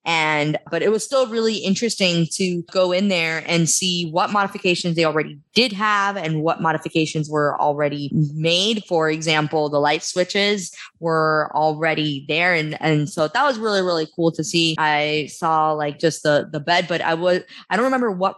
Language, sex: English, female